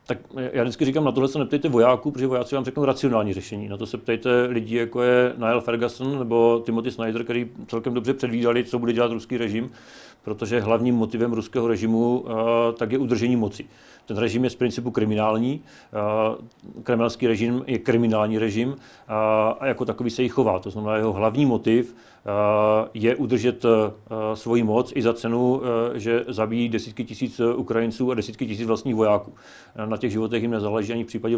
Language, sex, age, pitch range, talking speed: Czech, male, 40-59, 110-120 Hz, 180 wpm